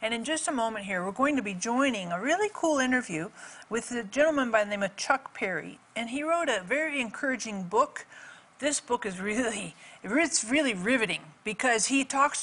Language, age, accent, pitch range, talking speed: English, 50-69, American, 200-265 Hz, 200 wpm